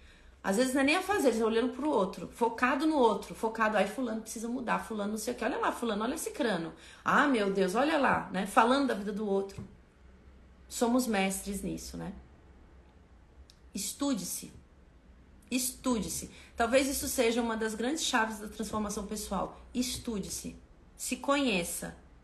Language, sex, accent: Portuguese, female, Brazilian